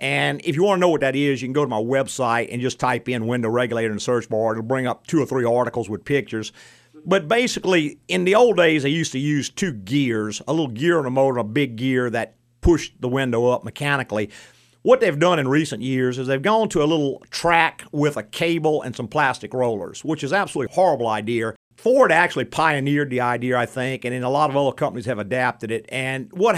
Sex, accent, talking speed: male, American, 240 wpm